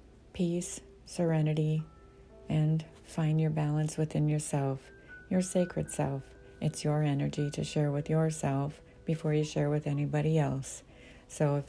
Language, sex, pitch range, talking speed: English, female, 150-170 Hz, 135 wpm